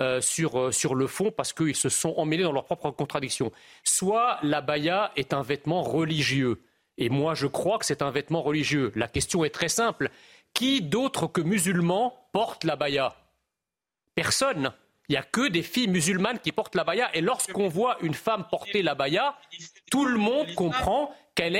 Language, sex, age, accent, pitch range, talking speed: French, male, 40-59, French, 165-220 Hz, 190 wpm